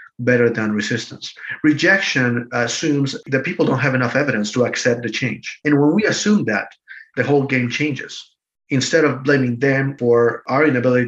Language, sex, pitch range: English, male, 120-135 Hz